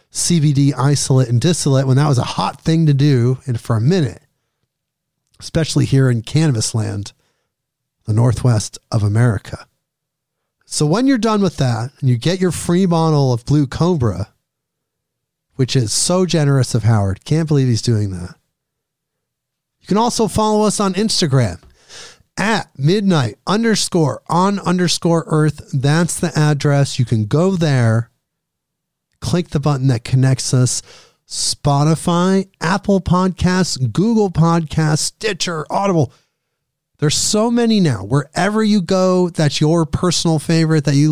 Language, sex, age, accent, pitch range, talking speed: English, male, 50-69, American, 130-170 Hz, 140 wpm